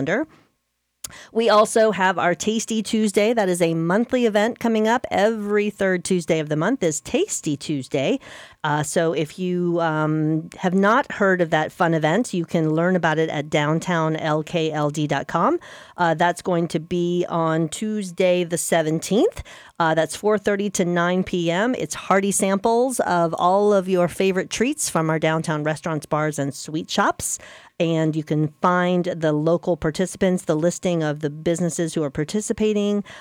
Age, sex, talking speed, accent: 40-59, female, 155 wpm, American